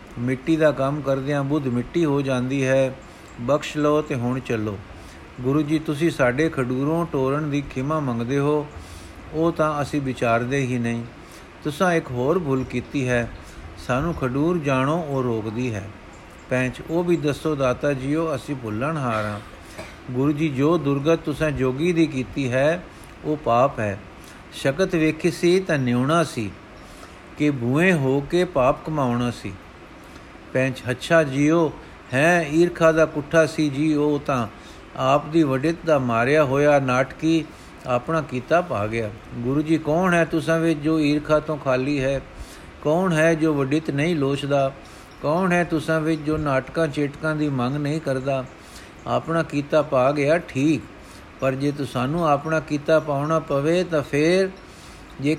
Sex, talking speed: male, 155 wpm